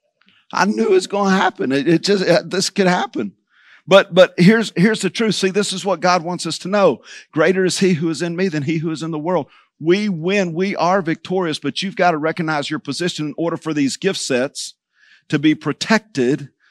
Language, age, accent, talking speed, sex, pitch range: English, 50-69, American, 225 wpm, male, 140-180 Hz